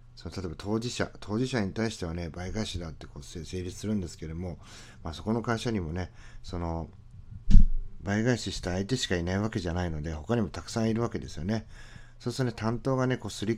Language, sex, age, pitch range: Japanese, male, 40-59, 85-115 Hz